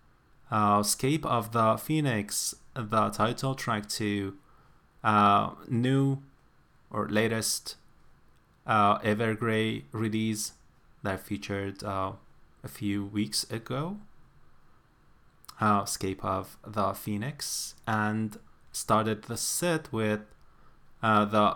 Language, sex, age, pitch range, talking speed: English, male, 30-49, 100-120 Hz, 95 wpm